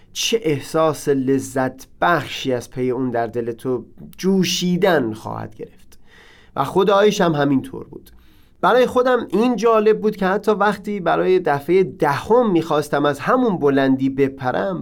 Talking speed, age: 140 wpm, 30-49